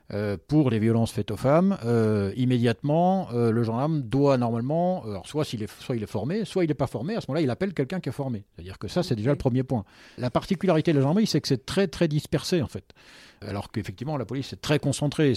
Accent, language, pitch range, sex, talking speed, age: French, French, 110-155 Hz, male, 250 wpm, 50-69